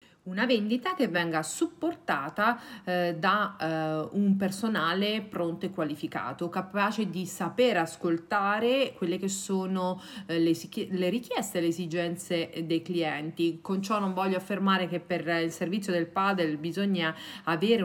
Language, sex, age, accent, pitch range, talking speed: Italian, female, 40-59, native, 170-230 Hz, 140 wpm